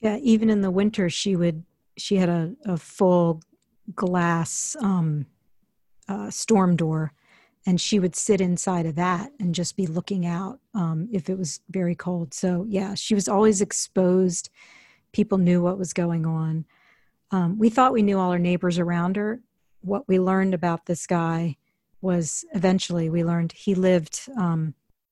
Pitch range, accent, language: 170-195 Hz, American, English